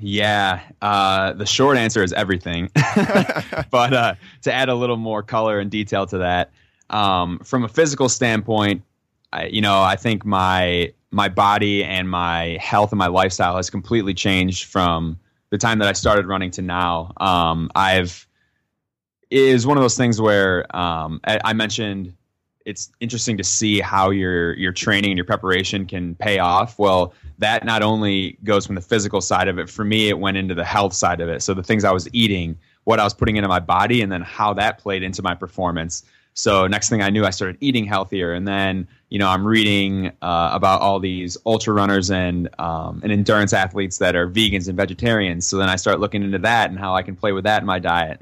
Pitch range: 90-110 Hz